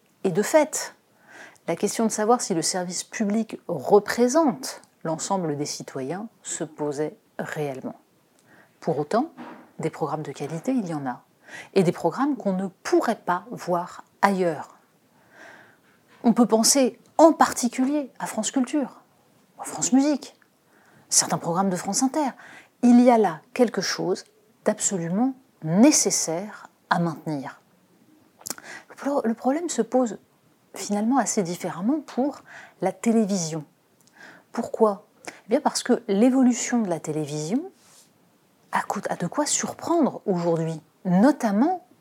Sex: female